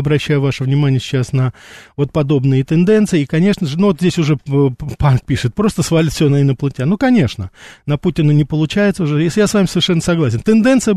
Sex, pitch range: male, 135-180 Hz